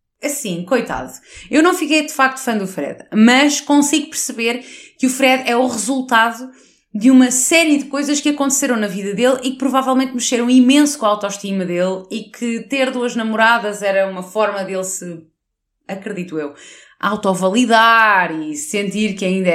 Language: Portuguese